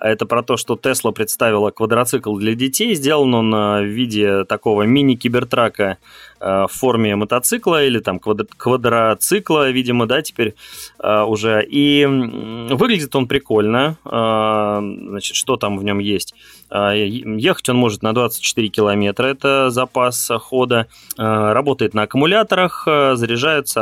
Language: Russian